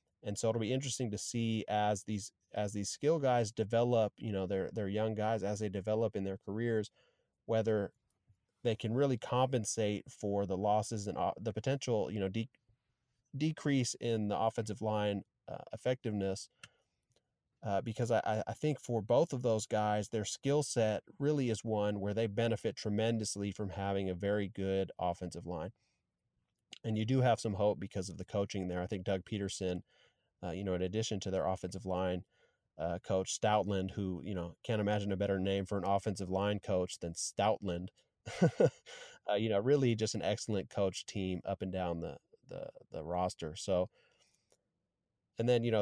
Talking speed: 180 wpm